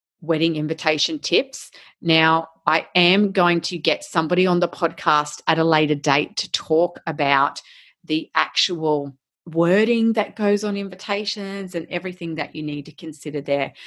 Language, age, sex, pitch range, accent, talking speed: English, 30-49, female, 155-205 Hz, Australian, 150 wpm